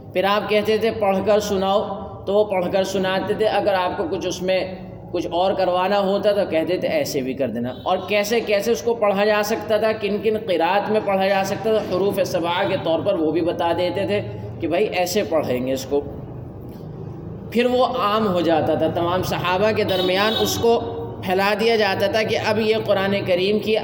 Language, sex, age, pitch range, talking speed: Urdu, male, 20-39, 180-215 Hz, 215 wpm